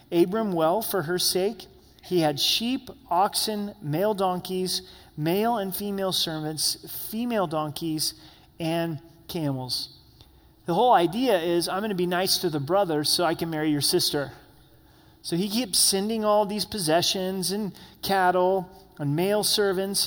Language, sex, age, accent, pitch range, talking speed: English, male, 30-49, American, 150-190 Hz, 145 wpm